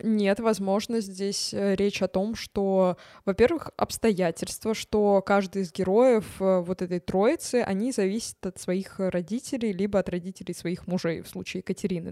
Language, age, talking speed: Russian, 20-39, 145 wpm